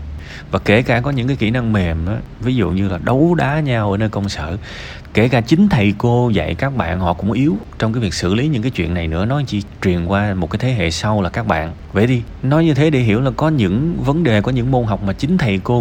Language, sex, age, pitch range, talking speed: Vietnamese, male, 20-39, 80-120 Hz, 280 wpm